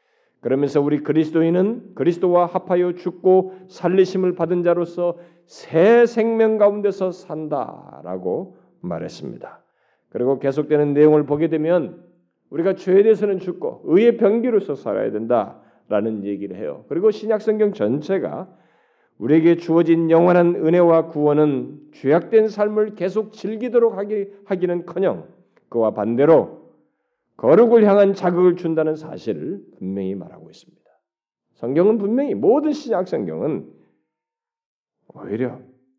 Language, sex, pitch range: Korean, male, 155-225 Hz